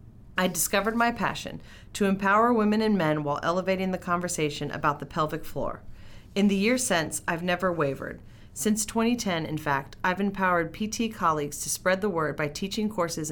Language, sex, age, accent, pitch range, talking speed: English, female, 40-59, American, 145-185 Hz, 175 wpm